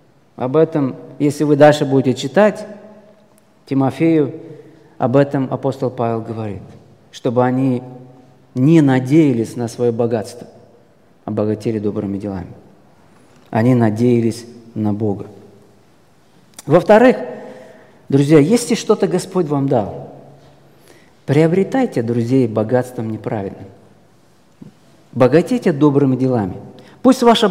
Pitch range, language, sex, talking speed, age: 125-200 Hz, Russian, male, 95 wpm, 40-59